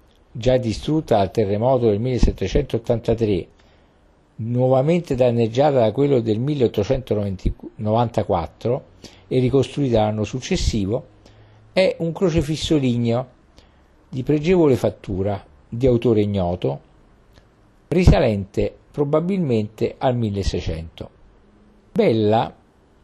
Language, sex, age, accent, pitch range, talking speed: Italian, male, 50-69, native, 100-140 Hz, 80 wpm